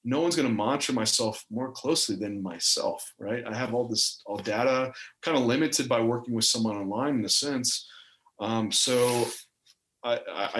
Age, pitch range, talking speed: 30-49, 110-135 Hz, 175 wpm